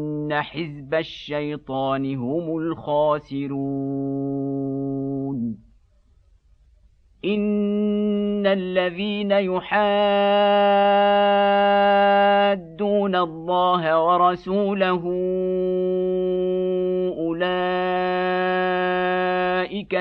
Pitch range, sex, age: 140-185 Hz, male, 50-69